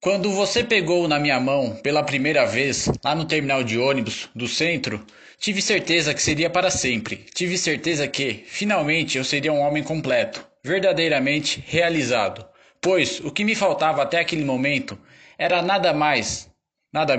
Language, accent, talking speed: Portuguese, Brazilian, 155 wpm